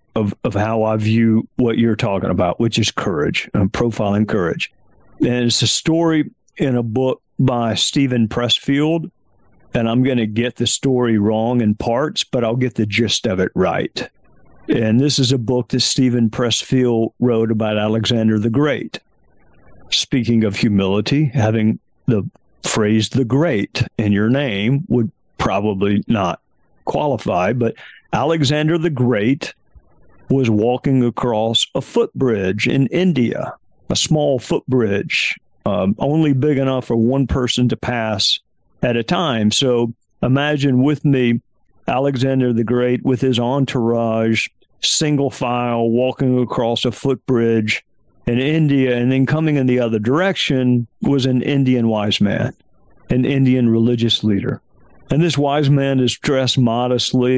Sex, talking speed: male, 145 wpm